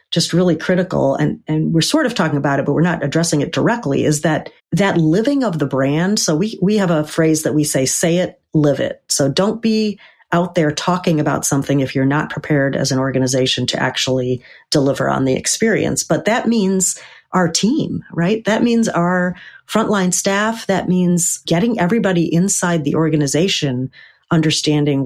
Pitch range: 140-180 Hz